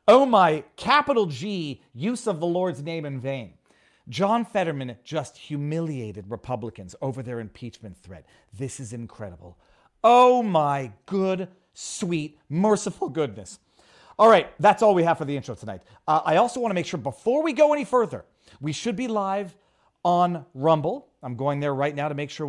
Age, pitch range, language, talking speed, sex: 40-59, 125-170 Hz, English, 175 wpm, male